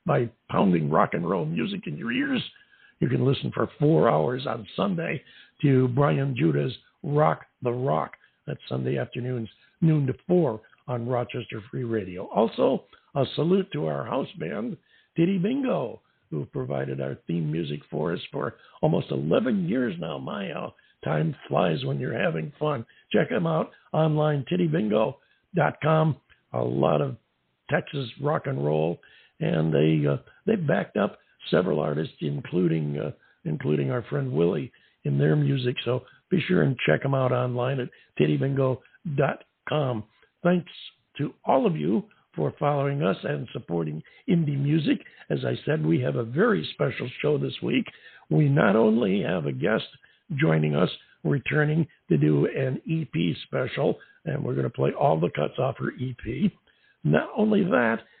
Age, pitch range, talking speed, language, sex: 60-79, 95-160 Hz, 155 wpm, English, male